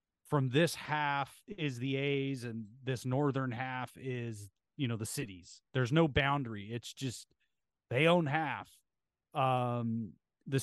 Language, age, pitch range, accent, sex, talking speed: English, 30-49, 115-150 Hz, American, male, 140 wpm